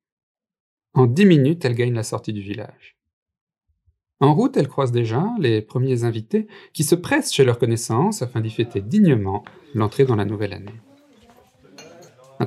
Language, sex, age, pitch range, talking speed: English, male, 40-59, 110-170 Hz, 160 wpm